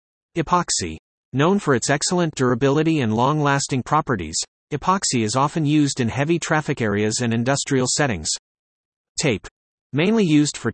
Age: 30-49